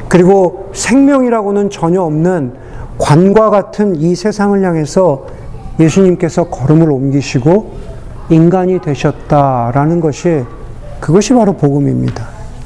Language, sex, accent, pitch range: Korean, male, native, 135-210 Hz